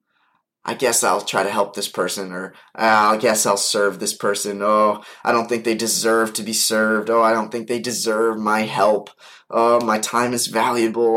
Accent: American